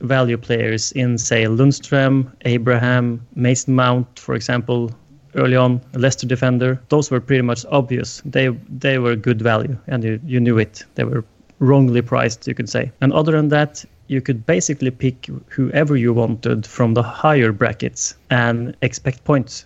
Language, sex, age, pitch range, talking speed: English, male, 30-49, 120-140 Hz, 165 wpm